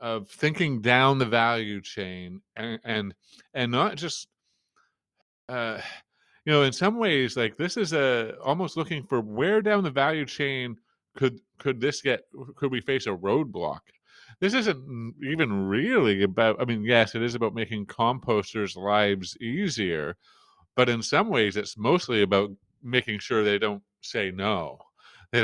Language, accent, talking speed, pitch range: English, American, 160 wpm, 105-140 Hz